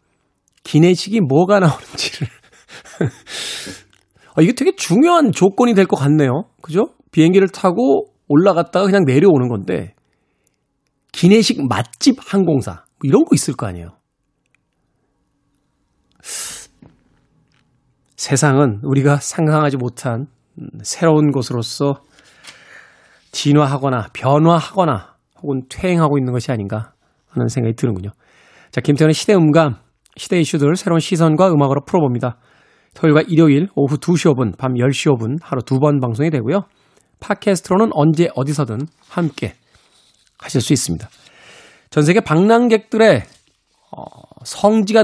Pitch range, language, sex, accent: 130-185 Hz, Korean, male, native